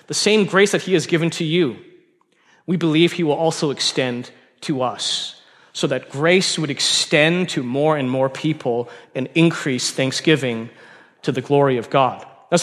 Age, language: 30-49, English